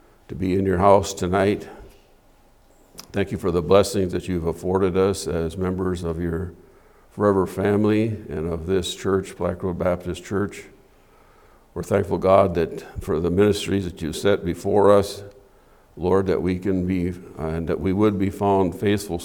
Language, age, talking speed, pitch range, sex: English, 50-69, 170 wpm, 90-100 Hz, male